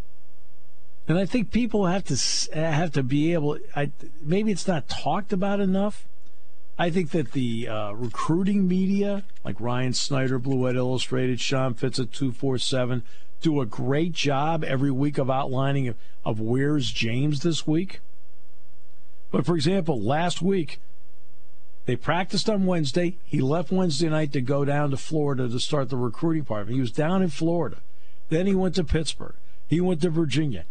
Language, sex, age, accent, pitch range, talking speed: English, male, 50-69, American, 115-185 Hz, 165 wpm